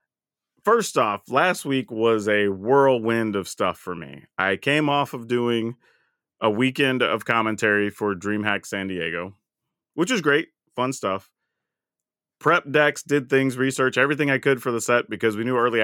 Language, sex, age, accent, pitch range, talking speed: English, male, 30-49, American, 110-145 Hz, 165 wpm